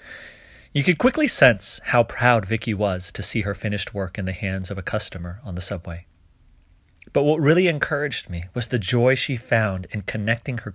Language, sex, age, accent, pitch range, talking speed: English, male, 30-49, American, 85-115 Hz, 195 wpm